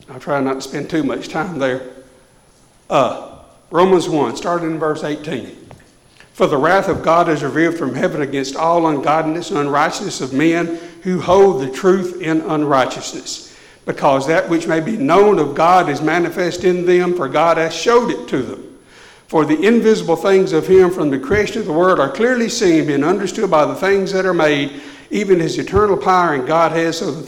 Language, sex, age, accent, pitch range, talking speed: English, male, 60-79, American, 150-190 Hz, 200 wpm